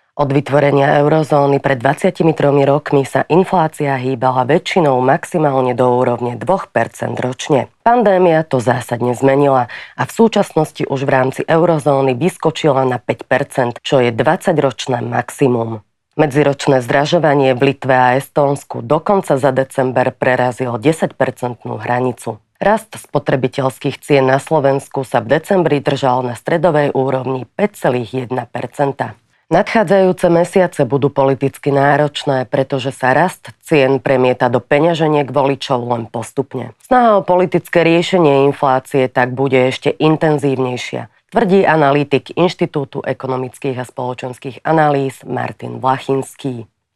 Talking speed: 120 wpm